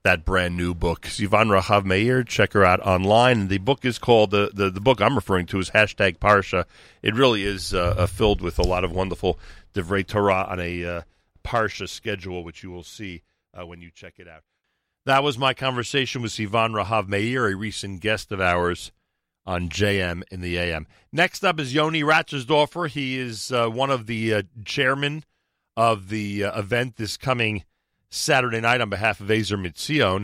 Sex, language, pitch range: male, English, 95-120 Hz